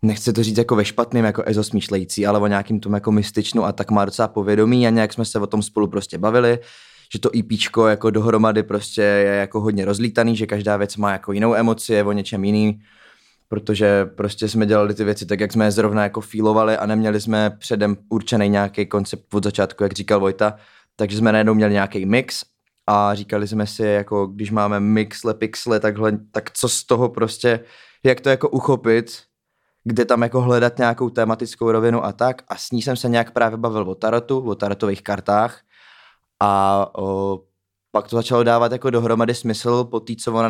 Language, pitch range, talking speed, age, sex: Czech, 100-115 Hz, 195 wpm, 20-39, male